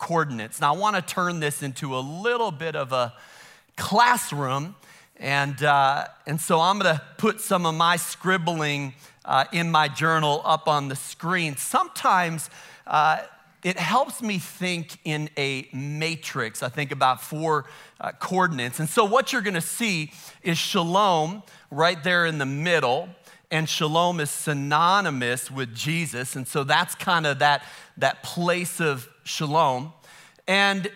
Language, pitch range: English, 145-185 Hz